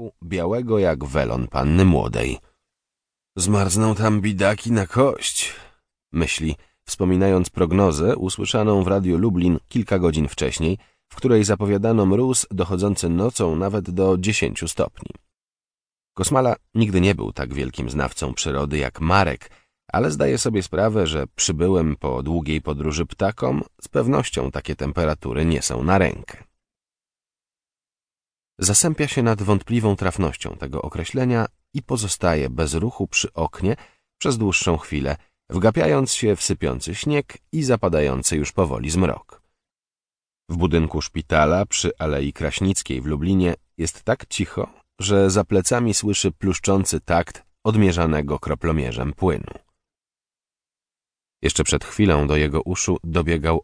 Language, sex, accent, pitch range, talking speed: Polish, male, native, 75-100 Hz, 125 wpm